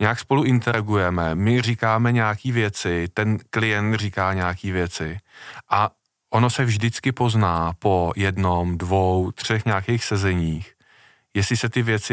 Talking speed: 135 wpm